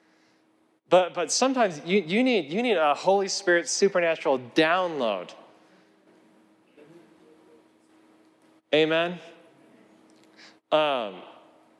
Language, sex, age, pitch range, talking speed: English, male, 30-49, 135-165 Hz, 75 wpm